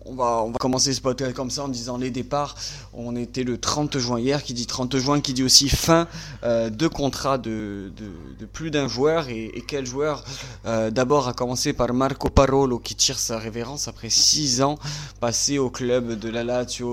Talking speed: 205 wpm